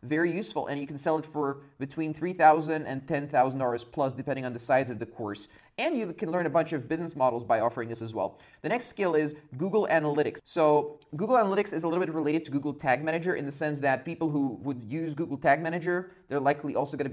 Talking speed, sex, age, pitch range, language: 240 wpm, male, 30-49, 130-160 Hz, English